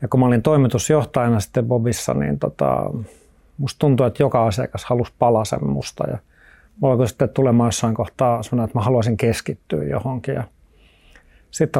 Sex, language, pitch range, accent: male, Finnish, 115-150 Hz, native